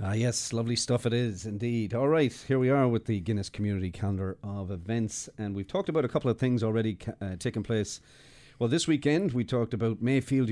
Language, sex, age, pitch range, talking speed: English, male, 40-59, 95-125 Hz, 220 wpm